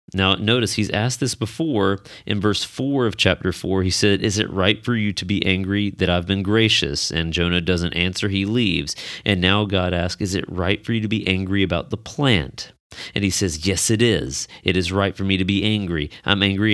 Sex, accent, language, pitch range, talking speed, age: male, American, English, 85-105 Hz, 225 wpm, 30-49